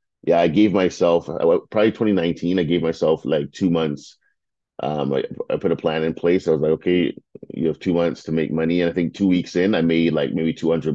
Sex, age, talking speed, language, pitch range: male, 30-49, 240 wpm, English, 75-85 Hz